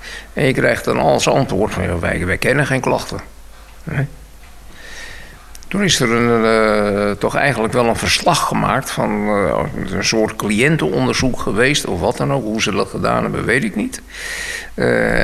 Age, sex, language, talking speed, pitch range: 50-69, male, Dutch, 175 wpm, 110-155 Hz